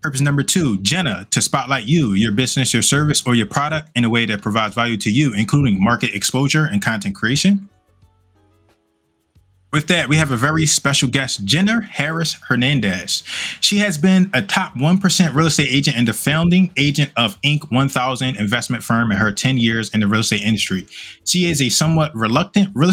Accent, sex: American, male